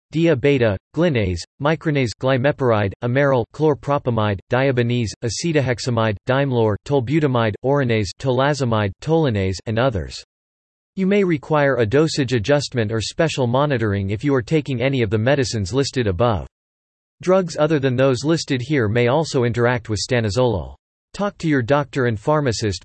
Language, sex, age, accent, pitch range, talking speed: English, male, 40-59, American, 110-145 Hz, 135 wpm